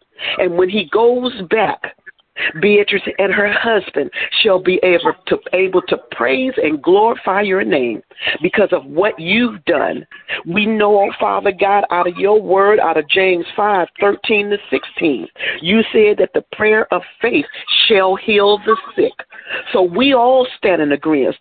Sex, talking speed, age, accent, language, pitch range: female, 160 wpm, 50-69, American, English, 170-225 Hz